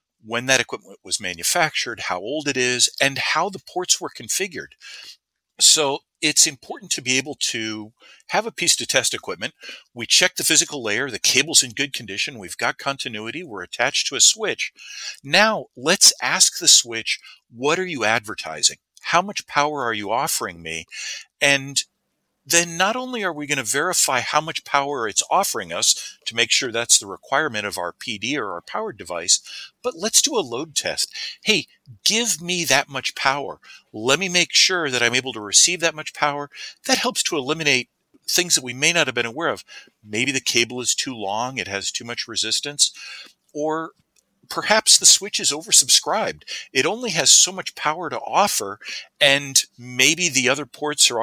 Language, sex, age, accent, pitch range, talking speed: English, male, 50-69, American, 125-175 Hz, 185 wpm